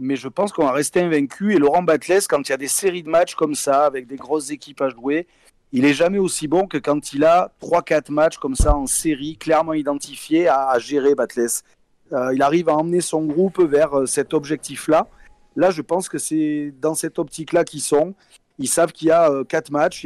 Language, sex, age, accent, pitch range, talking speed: French, male, 30-49, French, 140-165 Hz, 220 wpm